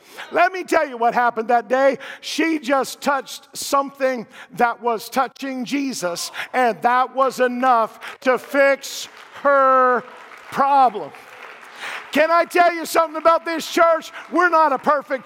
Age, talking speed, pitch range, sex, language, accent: 50-69, 140 wpm, 220-300 Hz, male, English, American